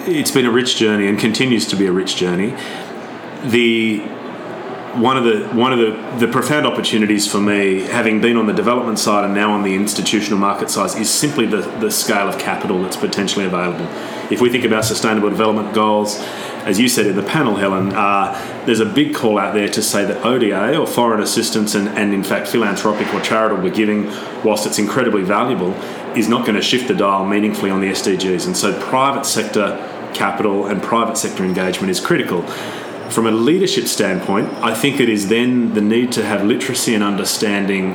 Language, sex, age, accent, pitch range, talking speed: English, male, 30-49, Australian, 100-115 Hz, 200 wpm